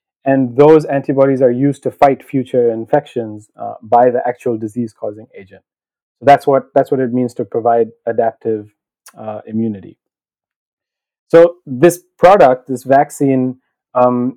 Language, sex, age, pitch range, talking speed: English, male, 30-49, 120-160 Hz, 135 wpm